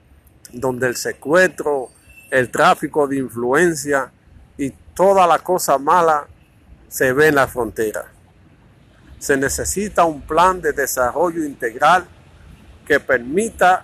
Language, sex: Spanish, male